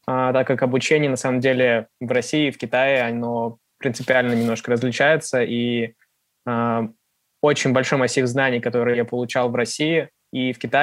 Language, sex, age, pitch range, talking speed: Russian, male, 20-39, 120-135 Hz, 160 wpm